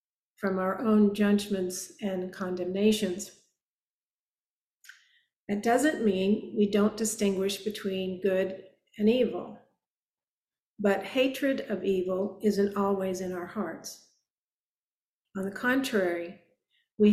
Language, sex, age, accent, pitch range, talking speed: English, female, 50-69, American, 185-215 Hz, 100 wpm